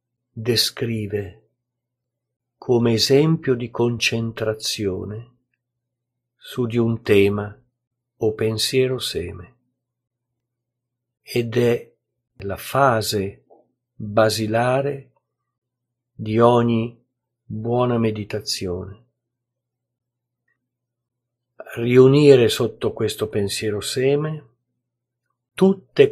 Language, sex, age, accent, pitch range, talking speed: Italian, male, 50-69, native, 115-125 Hz, 60 wpm